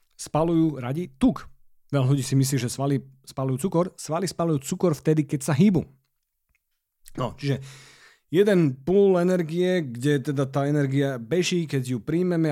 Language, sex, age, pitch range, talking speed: Slovak, male, 40-59, 120-160 Hz, 150 wpm